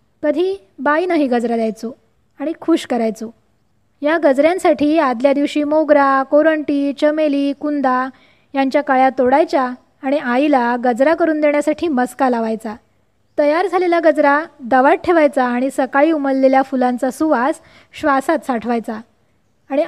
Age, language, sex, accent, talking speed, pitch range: 20-39, Marathi, female, native, 115 wpm, 260-310 Hz